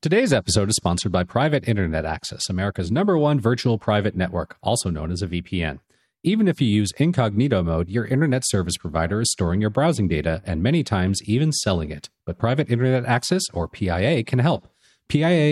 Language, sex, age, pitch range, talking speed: English, male, 40-59, 95-130 Hz, 190 wpm